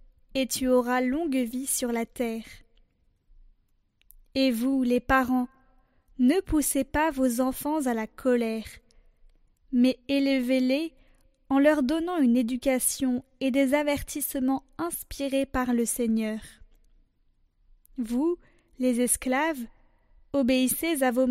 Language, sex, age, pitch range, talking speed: French, female, 20-39, 245-280 Hz, 115 wpm